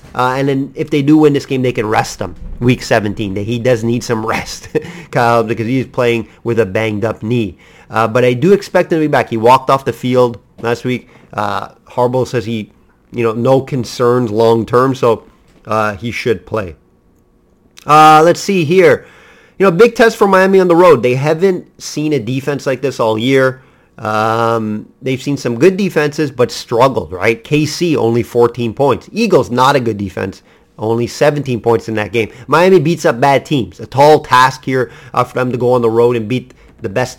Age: 30-49